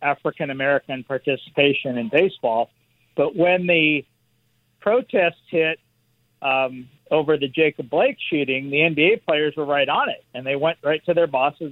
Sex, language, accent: male, English, American